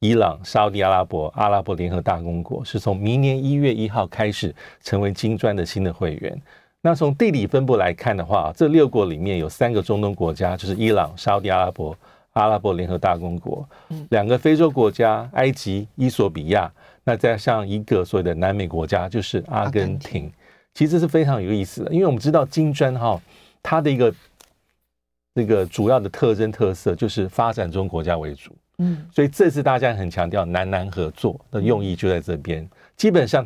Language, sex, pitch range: Chinese, male, 90-130 Hz